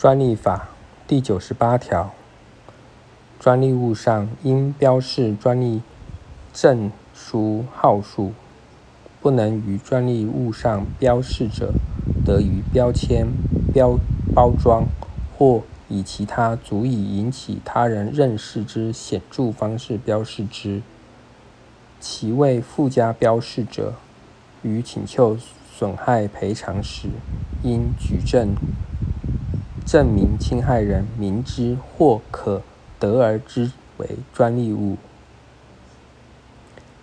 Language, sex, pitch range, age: Chinese, male, 105-125 Hz, 50-69